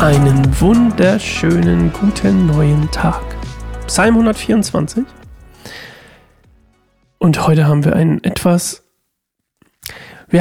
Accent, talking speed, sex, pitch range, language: German, 80 wpm, male, 150-180 Hz, German